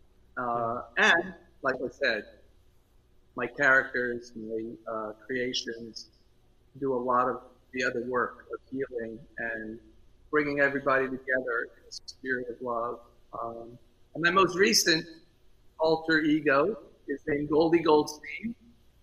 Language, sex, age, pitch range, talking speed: English, male, 50-69, 125-160 Hz, 125 wpm